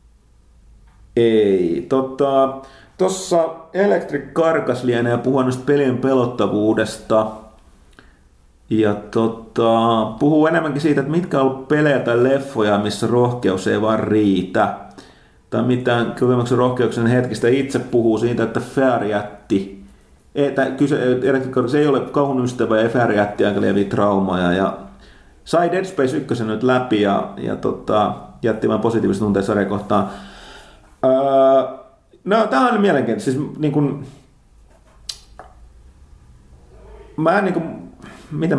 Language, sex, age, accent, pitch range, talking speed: Finnish, male, 30-49, native, 100-135 Hz, 115 wpm